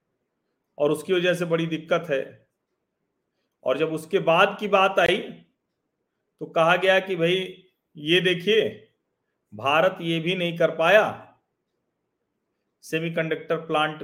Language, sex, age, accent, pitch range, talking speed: Hindi, male, 40-59, native, 145-190 Hz, 125 wpm